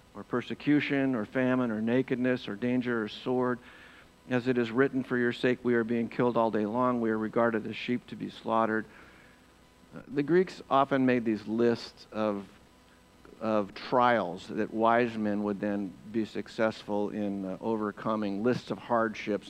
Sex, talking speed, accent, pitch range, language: male, 170 wpm, American, 110-130 Hz, English